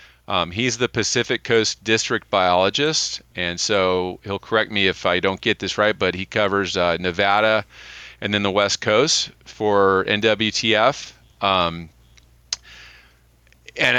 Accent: American